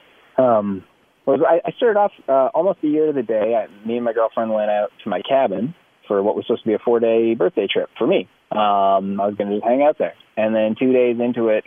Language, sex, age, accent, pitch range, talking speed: English, male, 30-49, American, 95-115 Hz, 250 wpm